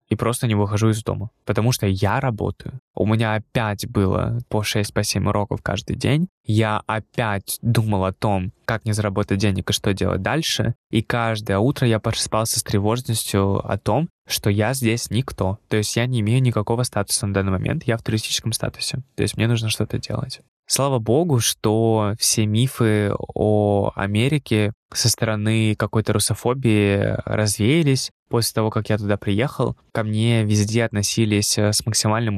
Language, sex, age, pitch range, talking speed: Russian, male, 20-39, 105-120 Hz, 165 wpm